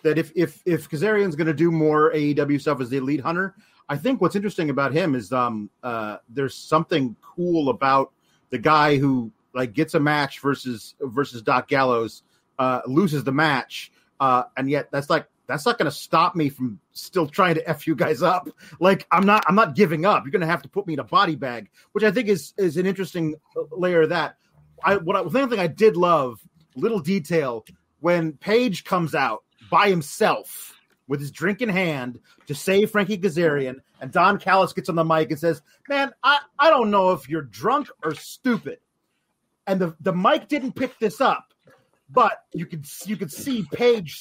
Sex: male